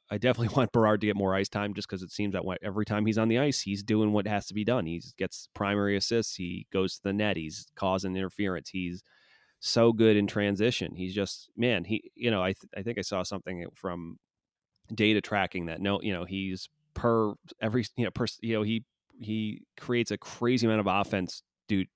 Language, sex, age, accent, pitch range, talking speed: English, male, 30-49, American, 95-110 Hz, 220 wpm